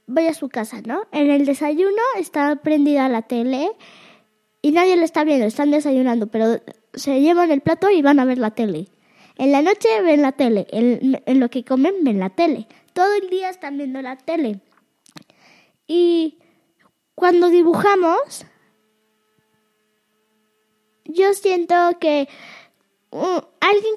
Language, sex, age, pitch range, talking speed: Spanish, female, 20-39, 235-320 Hz, 145 wpm